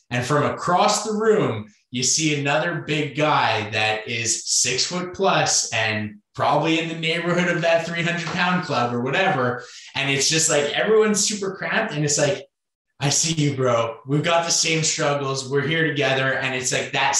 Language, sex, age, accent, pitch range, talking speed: English, male, 20-39, American, 110-145 Hz, 185 wpm